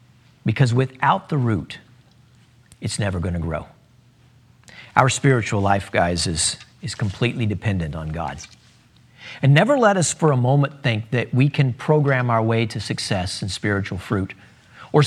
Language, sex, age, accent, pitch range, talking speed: English, male, 40-59, American, 110-145 Hz, 155 wpm